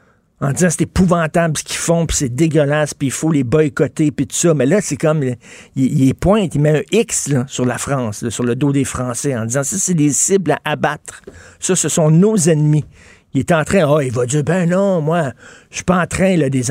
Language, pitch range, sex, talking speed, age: French, 140-170 Hz, male, 255 wpm, 50-69